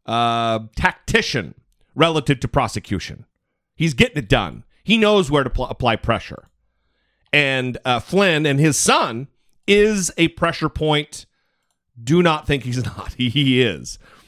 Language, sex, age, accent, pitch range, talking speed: English, male, 40-59, American, 120-180 Hz, 145 wpm